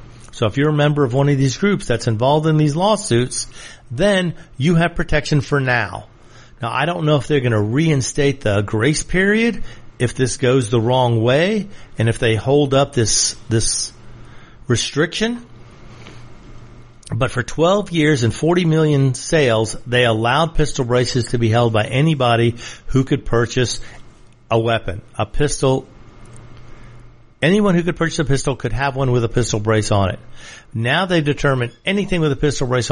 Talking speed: 170 wpm